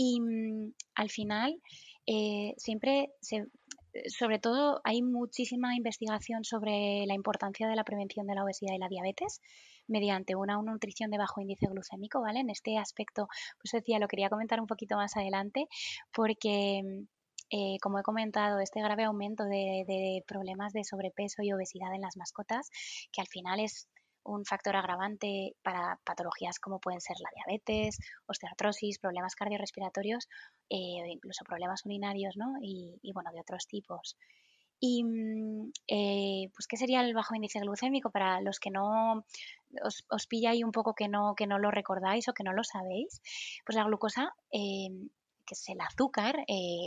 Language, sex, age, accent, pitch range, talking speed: Spanish, female, 20-39, Spanish, 195-225 Hz, 165 wpm